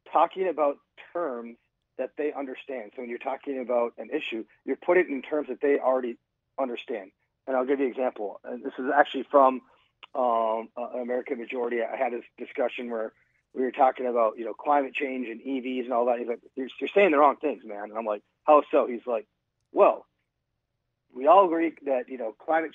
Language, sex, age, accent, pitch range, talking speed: English, male, 40-59, American, 120-150 Hz, 210 wpm